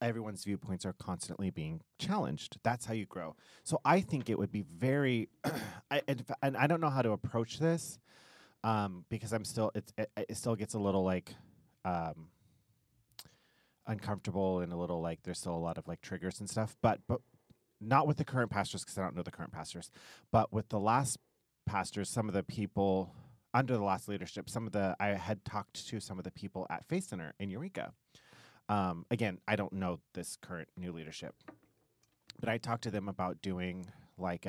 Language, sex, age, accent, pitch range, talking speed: English, male, 30-49, American, 90-115 Hz, 200 wpm